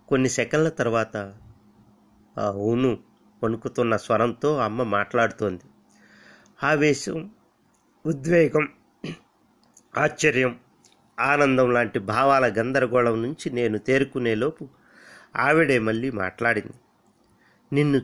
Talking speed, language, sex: 75 wpm, Telugu, male